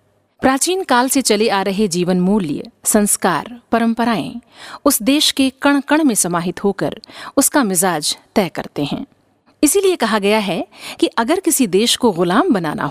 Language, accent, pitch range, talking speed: Hindi, native, 200-275 Hz, 160 wpm